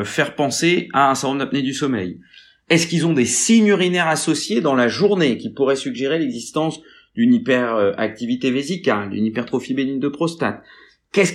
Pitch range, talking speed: 135-175 Hz, 165 wpm